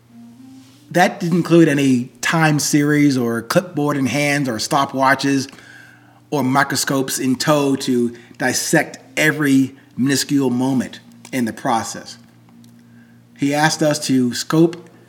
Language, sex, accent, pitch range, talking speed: English, male, American, 120-155 Hz, 115 wpm